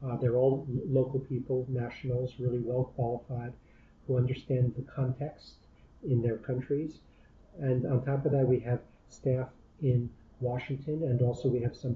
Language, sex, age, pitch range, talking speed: English, male, 50-69, 120-135 Hz, 155 wpm